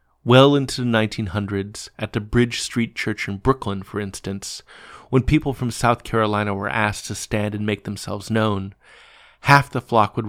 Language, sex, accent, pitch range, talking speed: English, male, American, 100-120 Hz, 175 wpm